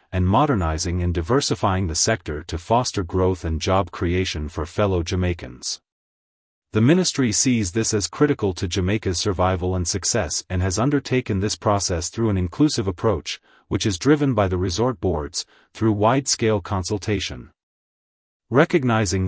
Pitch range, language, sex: 90-120 Hz, English, male